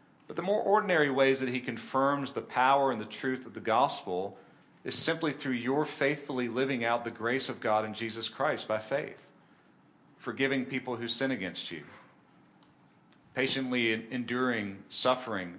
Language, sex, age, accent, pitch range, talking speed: English, male, 40-59, American, 120-155 Hz, 160 wpm